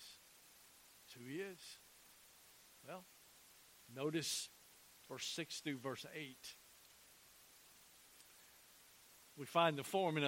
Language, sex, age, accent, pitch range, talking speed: English, male, 50-69, American, 130-160 Hz, 80 wpm